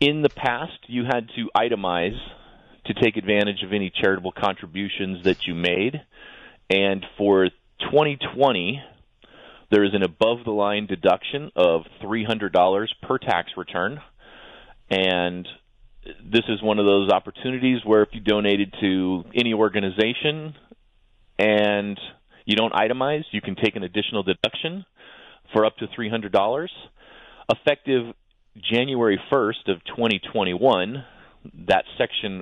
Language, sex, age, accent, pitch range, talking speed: English, male, 30-49, American, 95-115 Hz, 120 wpm